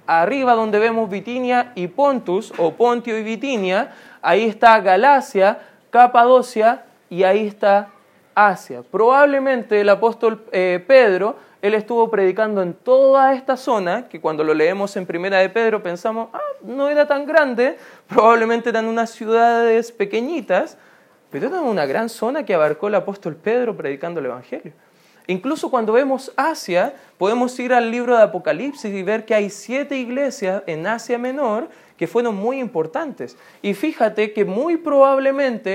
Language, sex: Spanish, male